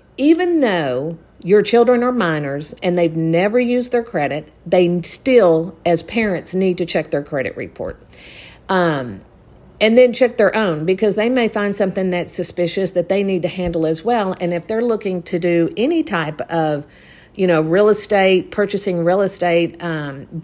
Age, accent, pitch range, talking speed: 50-69, American, 160-210 Hz, 175 wpm